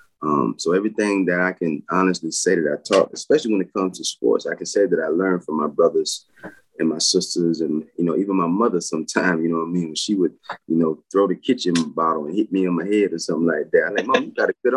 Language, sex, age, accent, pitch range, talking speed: English, male, 20-39, American, 85-105 Hz, 270 wpm